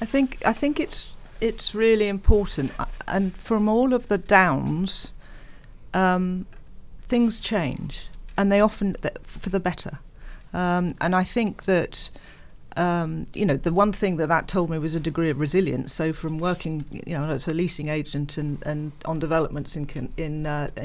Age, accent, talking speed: 50-69, British, 170 wpm